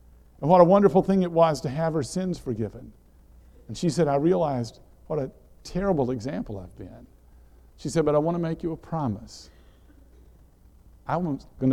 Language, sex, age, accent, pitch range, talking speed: English, male, 50-69, American, 110-170 Hz, 180 wpm